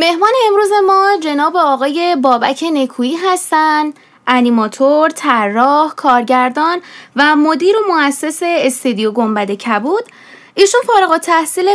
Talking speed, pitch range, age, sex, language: 100 wpm, 245-320 Hz, 10-29, female, Persian